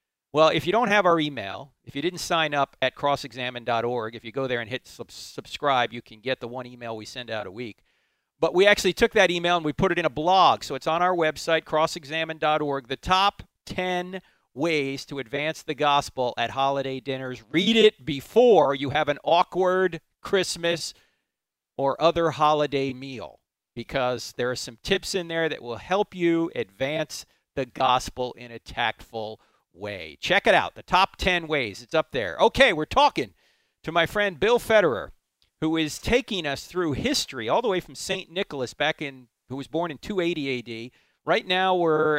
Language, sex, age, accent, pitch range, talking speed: English, male, 40-59, American, 130-185 Hz, 190 wpm